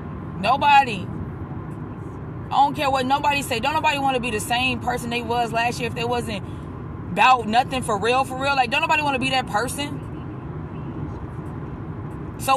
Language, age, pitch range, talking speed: English, 20-39, 270-325 Hz, 175 wpm